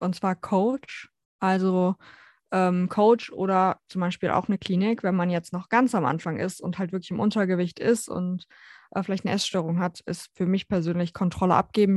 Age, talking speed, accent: 20-39, 190 wpm, German